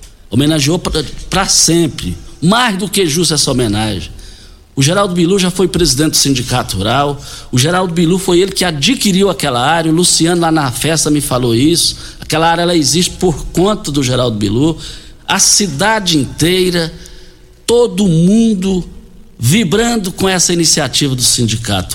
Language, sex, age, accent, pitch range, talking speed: Portuguese, male, 60-79, Brazilian, 135-185 Hz, 150 wpm